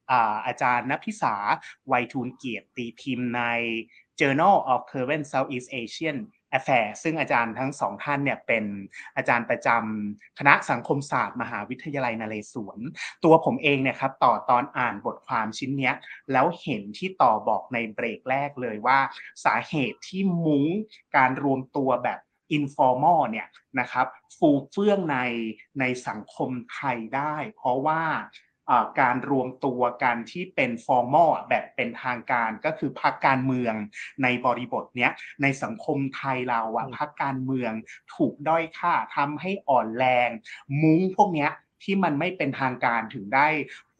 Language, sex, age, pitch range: Thai, male, 30-49, 125-155 Hz